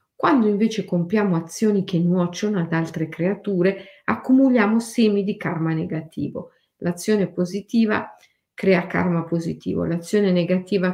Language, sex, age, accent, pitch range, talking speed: Italian, female, 50-69, native, 170-235 Hz, 115 wpm